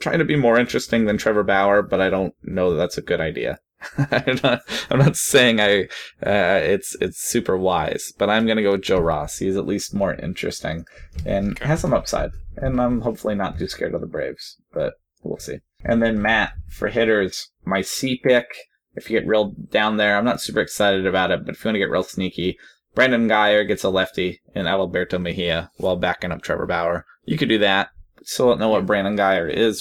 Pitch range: 90-110 Hz